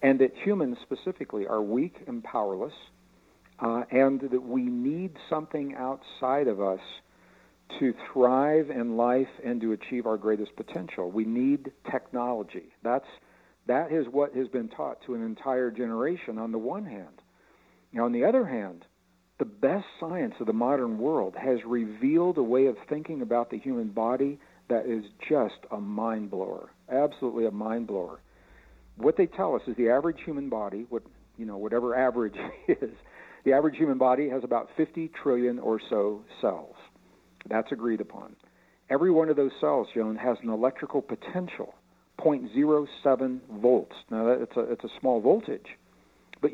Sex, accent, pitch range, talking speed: male, American, 115-150 Hz, 150 wpm